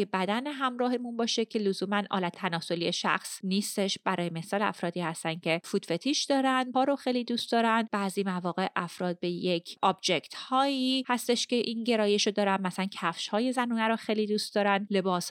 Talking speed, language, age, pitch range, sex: 175 wpm, Persian, 30-49, 185-245 Hz, female